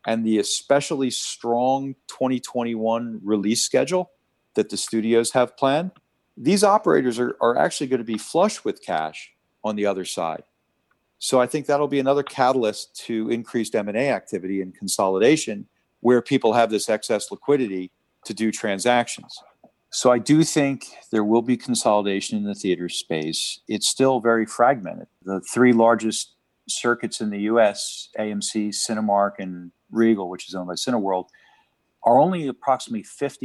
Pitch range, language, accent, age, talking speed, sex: 105-135 Hz, English, American, 50-69, 150 wpm, male